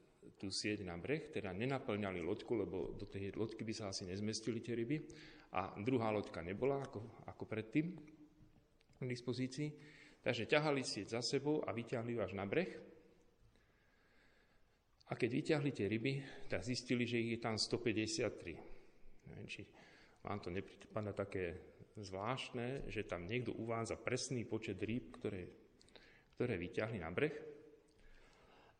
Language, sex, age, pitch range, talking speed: Slovak, male, 40-59, 100-130 Hz, 145 wpm